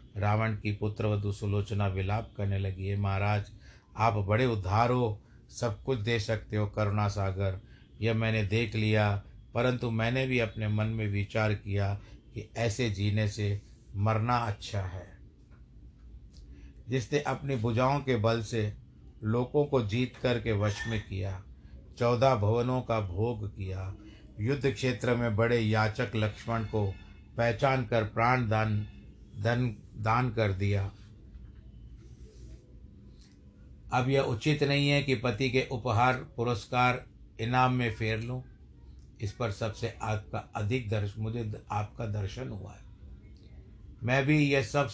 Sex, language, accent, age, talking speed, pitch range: male, Hindi, native, 60-79, 130 wpm, 105-125 Hz